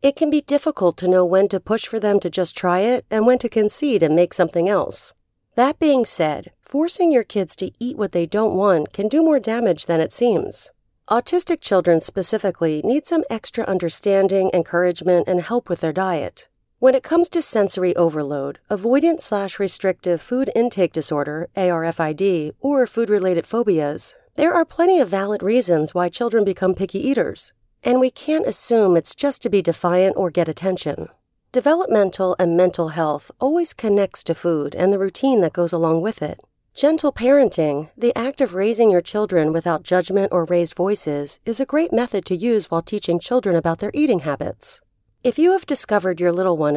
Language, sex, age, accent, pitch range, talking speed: English, female, 40-59, American, 175-250 Hz, 180 wpm